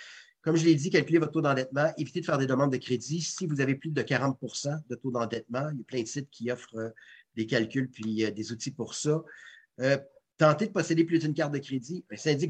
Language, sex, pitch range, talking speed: French, male, 125-155 Hz, 250 wpm